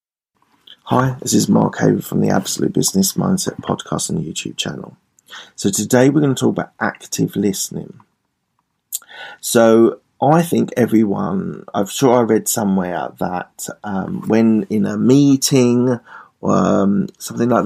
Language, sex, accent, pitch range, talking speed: English, male, British, 100-130 Hz, 145 wpm